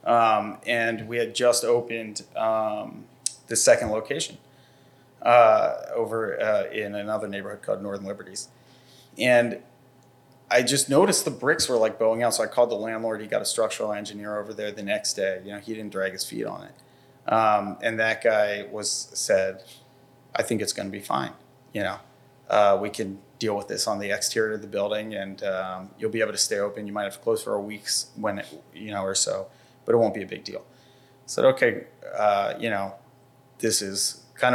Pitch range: 105-130 Hz